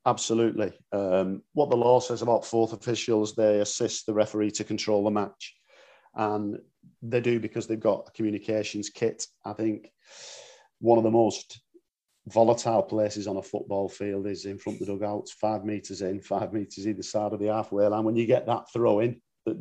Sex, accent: male, British